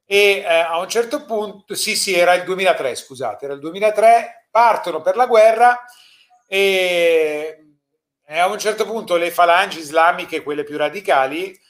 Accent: native